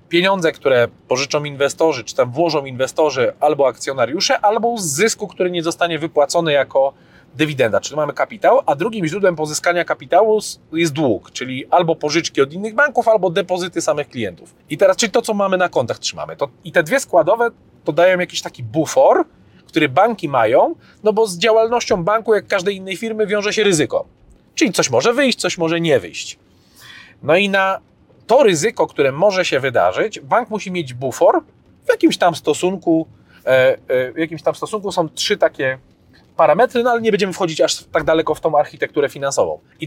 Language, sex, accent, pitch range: Polish, male, native, 155-215 Hz